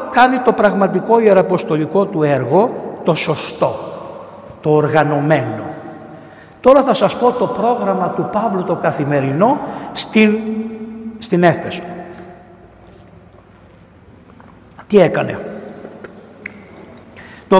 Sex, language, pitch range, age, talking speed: male, Greek, 155-230 Hz, 60-79, 90 wpm